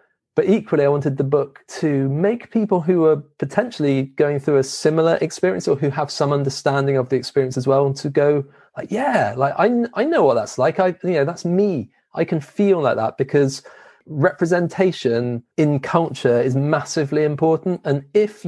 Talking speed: 190 wpm